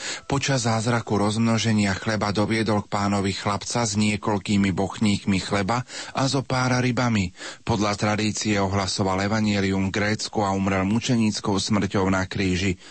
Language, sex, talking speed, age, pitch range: Slovak, male, 130 wpm, 40-59, 95-115 Hz